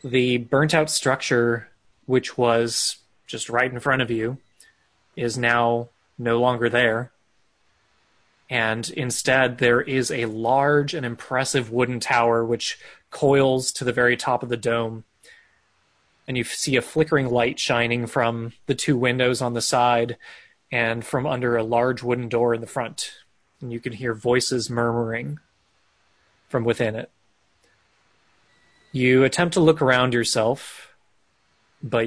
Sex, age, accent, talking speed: male, 20-39, American, 140 wpm